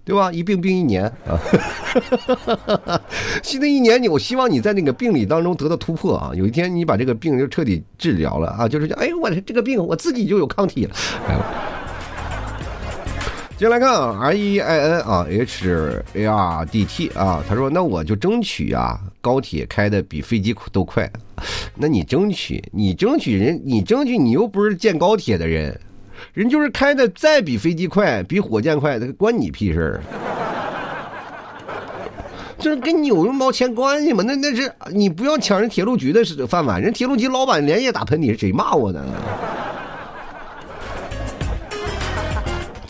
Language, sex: Chinese, male